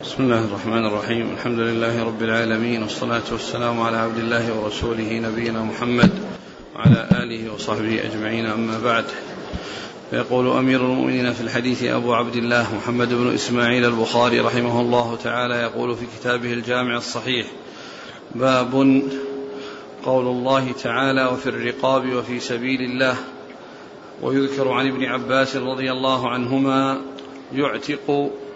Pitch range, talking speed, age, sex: 120-135 Hz, 125 wpm, 40-59, male